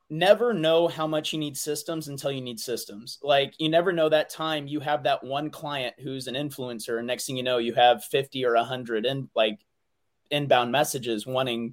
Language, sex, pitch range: English, male, 135-170 Hz